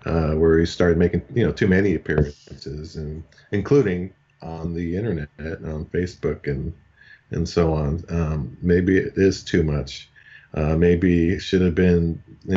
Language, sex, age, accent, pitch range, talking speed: English, male, 40-59, American, 80-95 Hz, 160 wpm